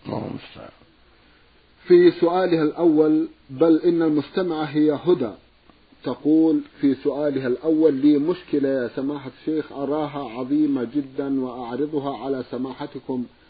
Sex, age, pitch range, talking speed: male, 50-69, 135-155 Hz, 100 wpm